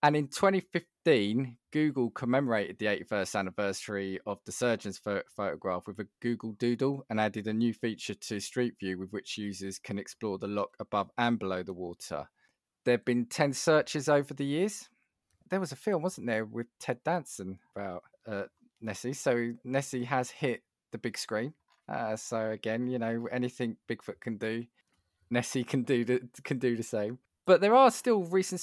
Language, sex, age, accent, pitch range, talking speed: English, male, 20-39, British, 110-135 Hz, 170 wpm